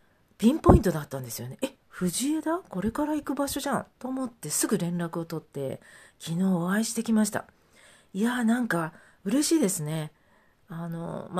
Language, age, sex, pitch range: Japanese, 40-59, female, 160-215 Hz